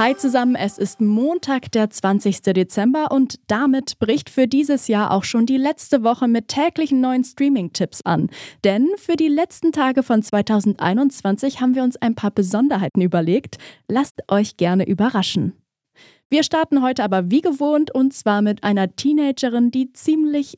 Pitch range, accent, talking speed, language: 205-275 Hz, German, 160 wpm, German